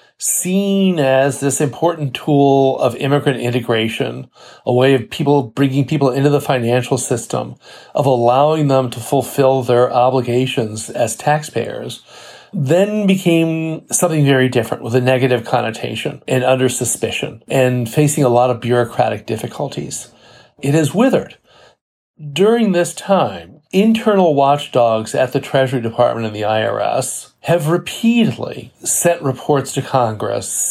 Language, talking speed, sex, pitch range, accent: English, 130 wpm, male, 120-155 Hz, American